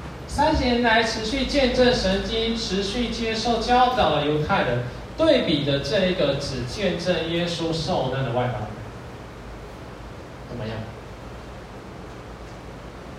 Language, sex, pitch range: Chinese, male, 130-205 Hz